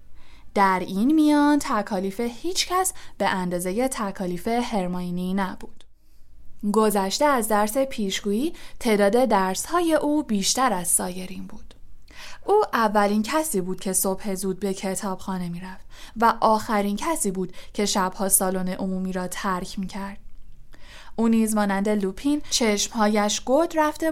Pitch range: 190-245 Hz